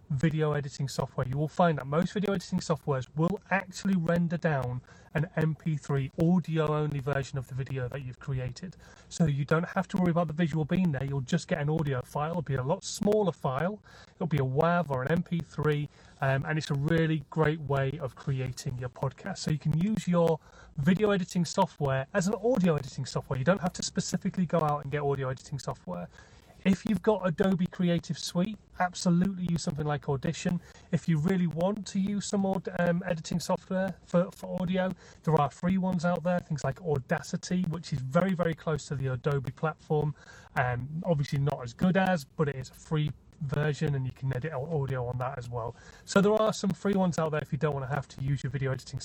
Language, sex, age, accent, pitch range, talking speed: English, male, 30-49, British, 140-180 Hz, 210 wpm